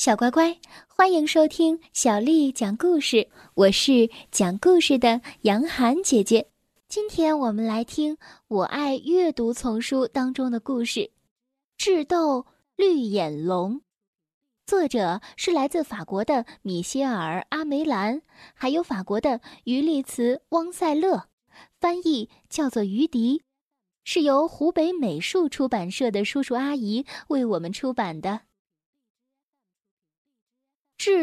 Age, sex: 10-29, female